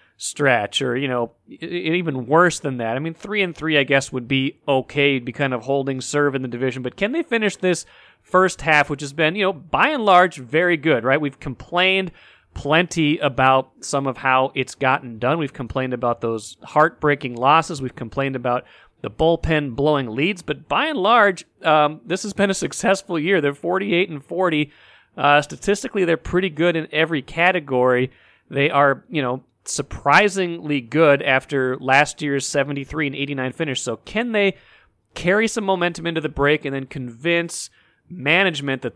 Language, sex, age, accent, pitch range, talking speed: English, male, 30-49, American, 135-175 Hz, 180 wpm